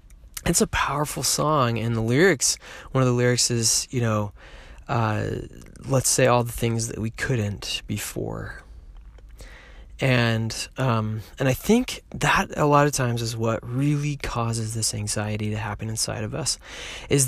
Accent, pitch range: American, 110-135 Hz